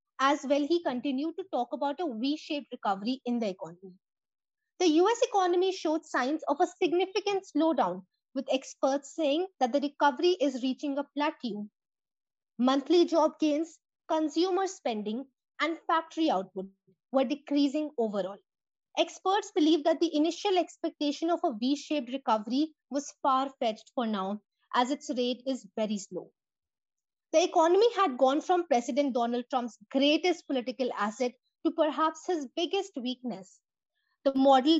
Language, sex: English, female